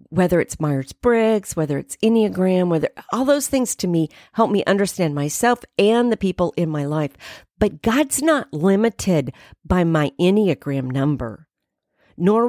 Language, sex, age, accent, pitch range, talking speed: English, female, 50-69, American, 160-225 Hz, 155 wpm